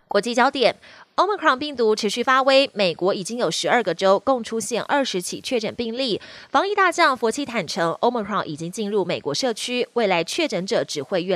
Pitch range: 200-275 Hz